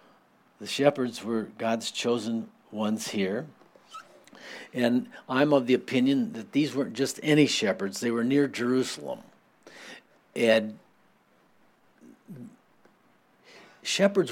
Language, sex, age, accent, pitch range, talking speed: English, male, 60-79, American, 120-145 Hz, 100 wpm